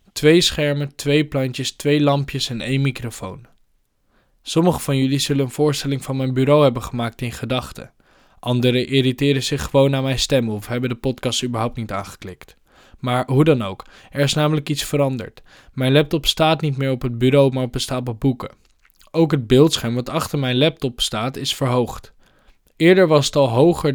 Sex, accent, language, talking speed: male, Dutch, Dutch, 180 wpm